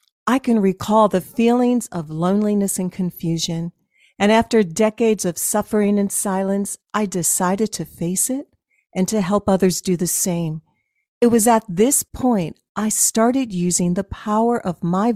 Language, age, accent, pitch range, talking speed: English, 50-69, American, 180-225 Hz, 160 wpm